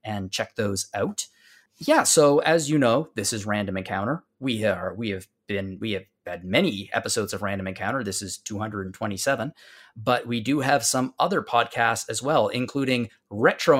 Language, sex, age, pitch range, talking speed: English, male, 20-39, 105-130 Hz, 175 wpm